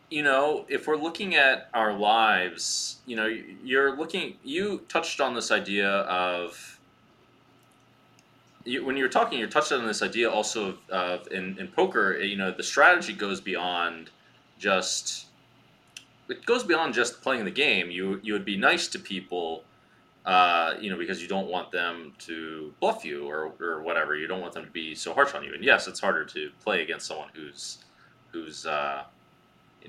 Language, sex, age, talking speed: English, male, 20-39, 185 wpm